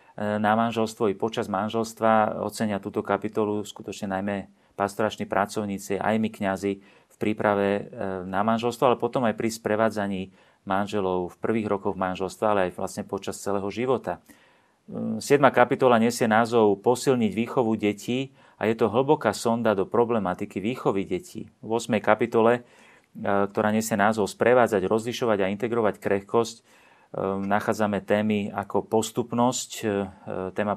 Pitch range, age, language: 100-115 Hz, 30-49, Slovak